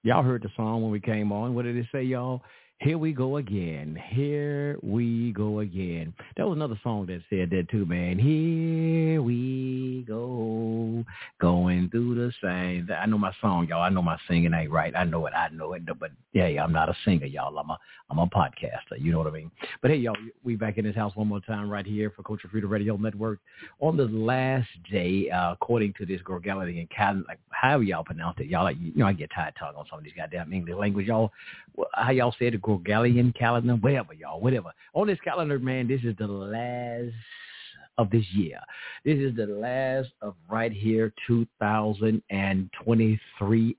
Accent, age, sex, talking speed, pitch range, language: American, 50-69, male, 210 wpm, 95-125 Hz, English